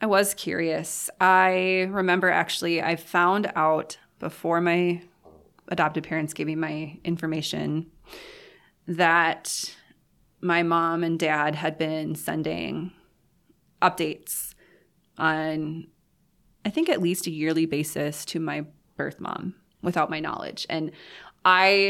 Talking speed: 120 wpm